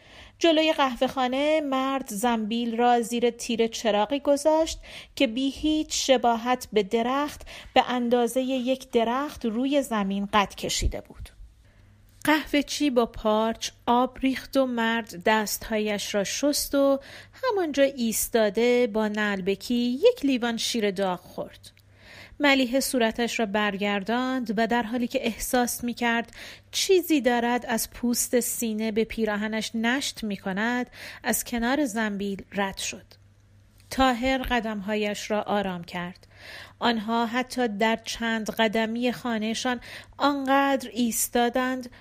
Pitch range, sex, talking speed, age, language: 215-260 Hz, female, 120 wpm, 40-59, Persian